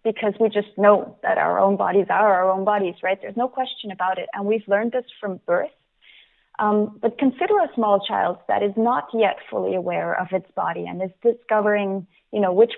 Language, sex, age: Danish, female, 20-39